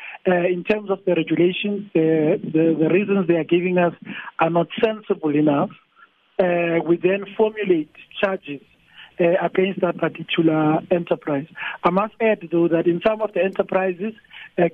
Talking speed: 160 wpm